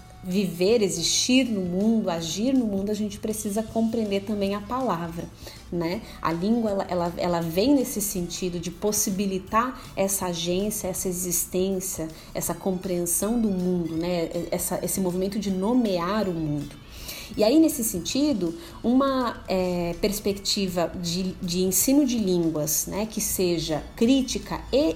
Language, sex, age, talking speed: Portuguese, female, 30-49, 130 wpm